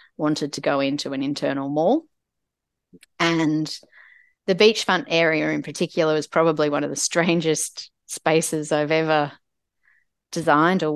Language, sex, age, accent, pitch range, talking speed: English, female, 30-49, Australian, 150-170 Hz, 130 wpm